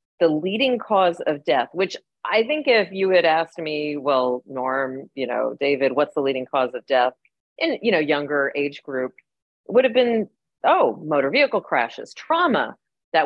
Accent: American